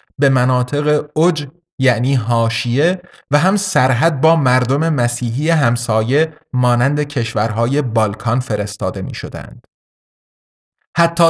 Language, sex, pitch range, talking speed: Persian, male, 115-150 Hz, 95 wpm